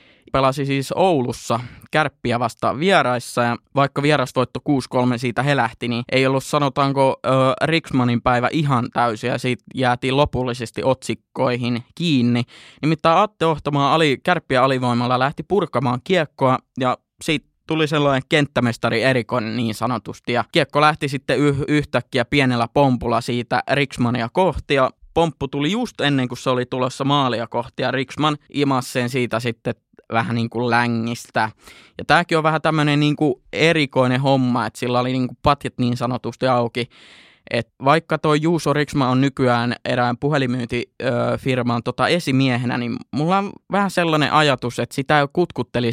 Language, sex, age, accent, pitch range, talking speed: Finnish, male, 20-39, native, 120-145 Hz, 140 wpm